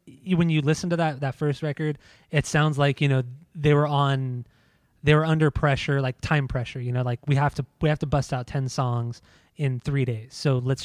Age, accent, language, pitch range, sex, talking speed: 20-39, American, English, 130-150 Hz, male, 225 wpm